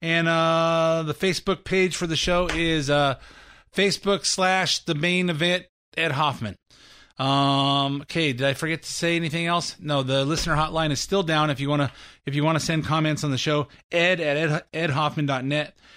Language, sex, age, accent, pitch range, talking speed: English, male, 30-49, American, 140-180 Hz, 180 wpm